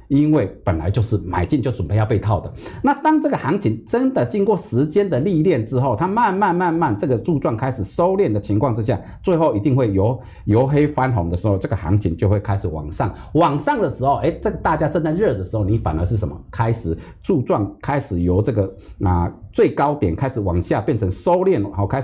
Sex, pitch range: male, 105-165 Hz